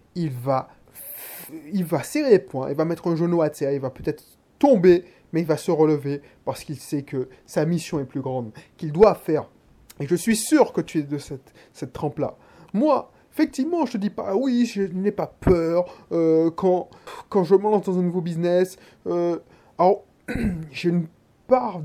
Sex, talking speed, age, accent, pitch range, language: male, 200 wpm, 20-39, French, 155-195 Hz, French